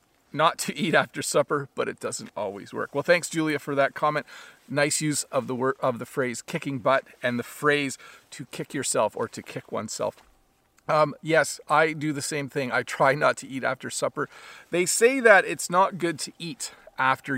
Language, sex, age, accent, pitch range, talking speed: English, male, 40-59, American, 130-170 Hz, 205 wpm